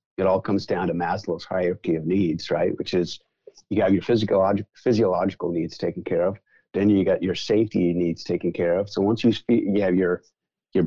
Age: 50-69